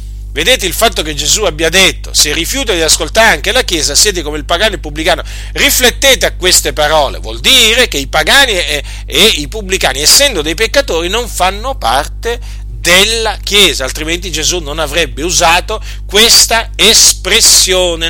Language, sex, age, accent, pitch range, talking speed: Italian, male, 40-59, native, 170-260 Hz, 160 wpm